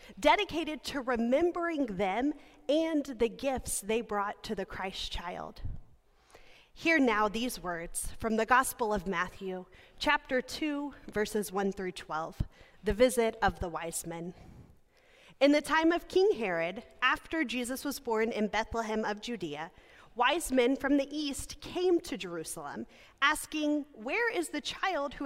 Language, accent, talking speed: English, American, 145 wpm